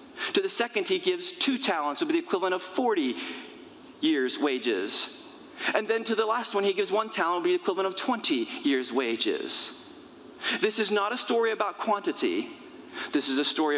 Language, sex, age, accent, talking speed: English, male, 40-59, American, 200 wpm